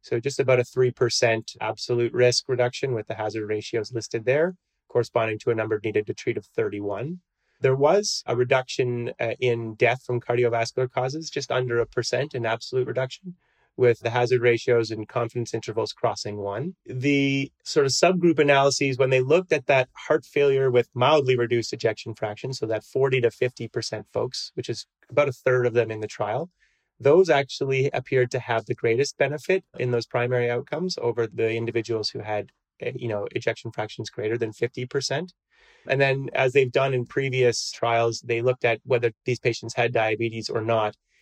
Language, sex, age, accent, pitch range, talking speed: English, male, 30-49, American, 115-135 Hz, 180 wpm